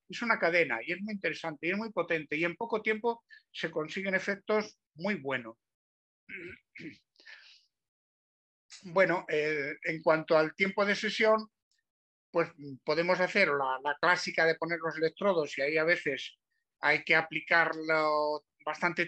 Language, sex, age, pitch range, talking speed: Spanish, male, 60-79, 160-200 Hz, 145 wpm